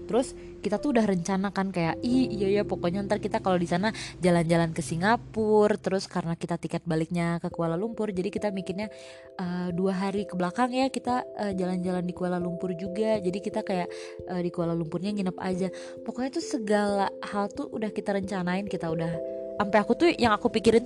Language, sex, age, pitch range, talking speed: Indonesian, female, 20-39, 175-220 Hz, 185 wpm